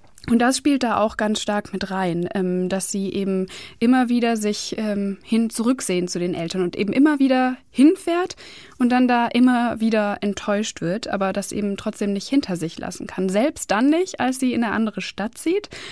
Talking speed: 190 wpm